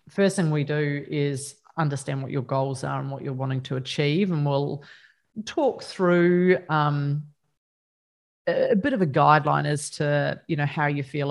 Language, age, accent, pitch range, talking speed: English, 30-49, Australian, 140-165 Hz, 175 wpm